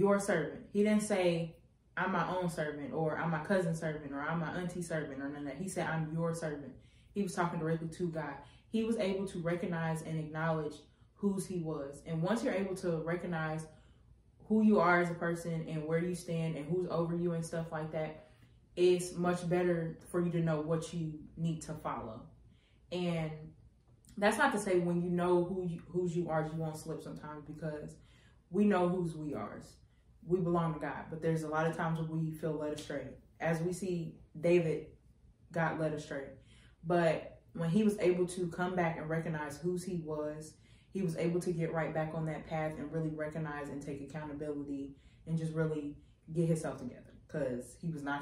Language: English